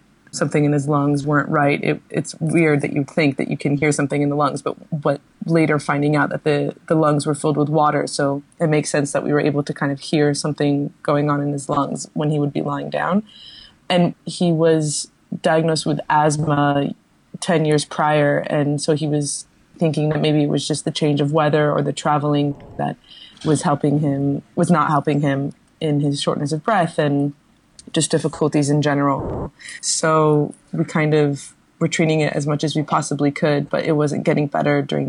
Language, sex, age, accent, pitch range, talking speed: English, female, 20-39, American, 145-155 Hz, 205 wpm